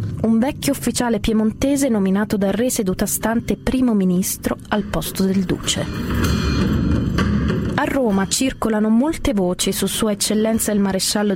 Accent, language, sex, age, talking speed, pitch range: native, Italian, female, 20-39, 130 wpm, 185-230 Hz